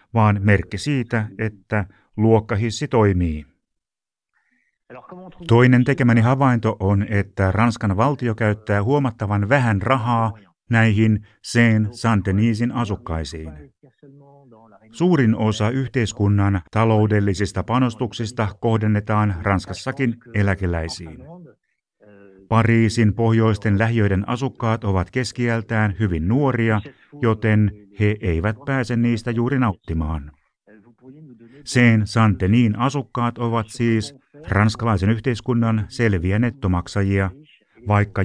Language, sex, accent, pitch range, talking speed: Finnish, male, native, 100-120 Hz, 85 wpm